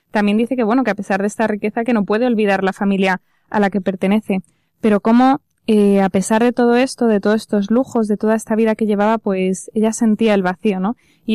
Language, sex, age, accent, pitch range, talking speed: Spanish, female, 20-39, Spanish, 200-235 Hz, 240 wpm